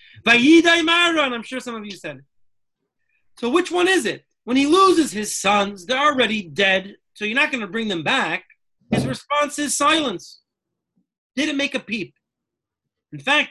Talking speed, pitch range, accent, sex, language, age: 170 wpm, 180-270 Hz, American, male, English, 40-59